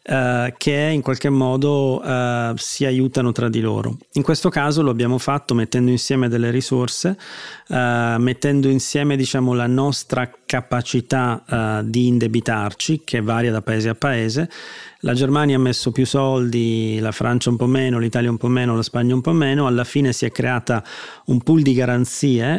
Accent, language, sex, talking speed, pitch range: native, Italian, male, 175 wpm, 115-135 Hz